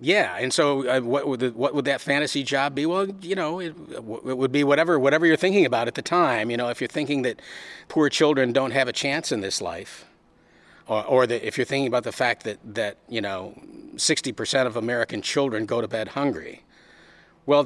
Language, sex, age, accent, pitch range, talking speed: English, male, 50-69, American, 110-140 Hz, 220 wpm